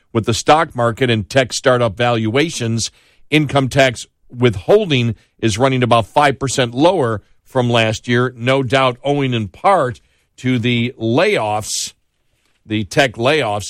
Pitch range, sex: 105-125 Hz, male